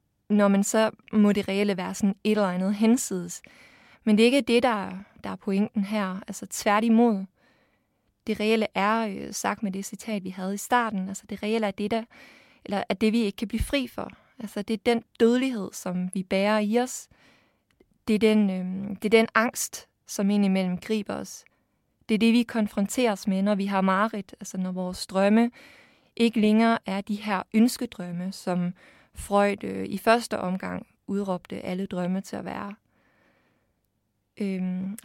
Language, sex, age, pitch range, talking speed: Danish, female, 20-39, 195-225 Hz, 175 wpm